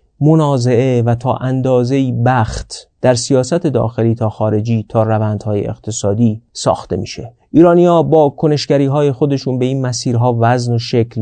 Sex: male